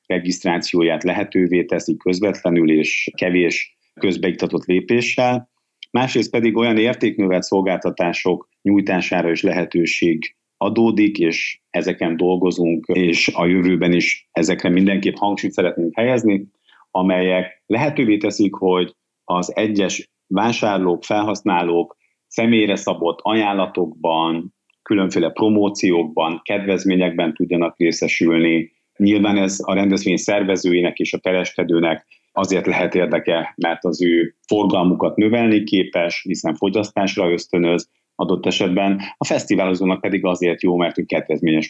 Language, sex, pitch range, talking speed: Hungarian, male, 85-100 Hz, 110 wpm